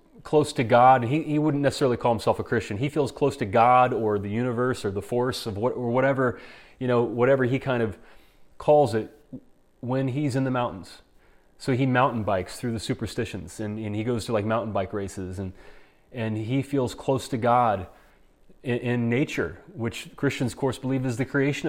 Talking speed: 200 wpm